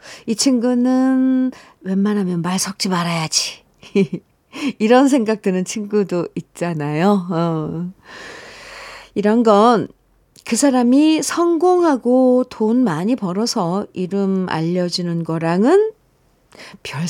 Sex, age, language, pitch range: female, 50-69, Korean, 175-265 Hz